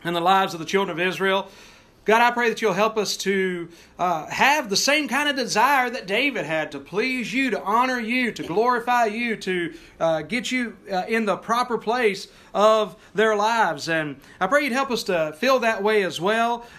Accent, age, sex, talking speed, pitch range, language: American, 40-59, male, 210 wpm, 180-230 Hz, English